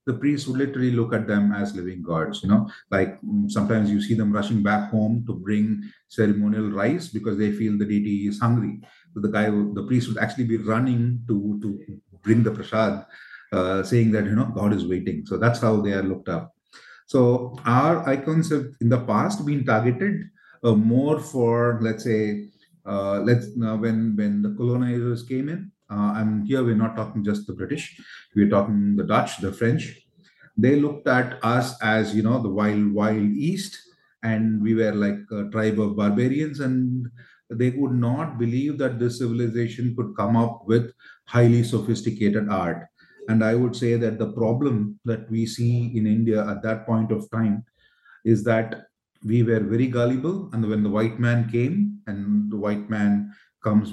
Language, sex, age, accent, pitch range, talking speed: Hindi, male, 30-49, native, 105-120 Hz, 185 wpm